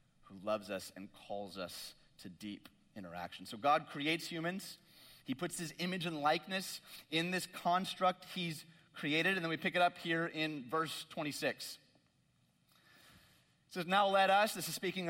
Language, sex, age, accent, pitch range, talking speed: English, male, 30-49, American, 155-195 Hz, 165 wpm